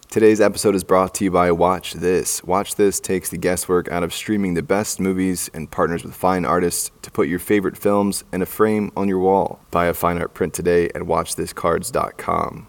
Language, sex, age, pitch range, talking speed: English, male, 20-39, 85-95 Hz, 210 wpm